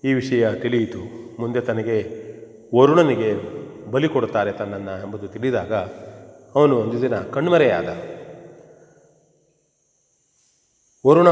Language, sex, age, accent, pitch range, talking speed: Kannada, male, 40-59, native, 110-135 Hz, 85 wpm